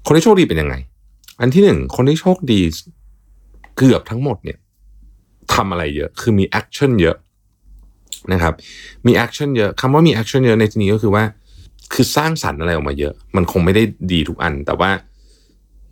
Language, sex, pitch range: Thai, male, 80-110 Hz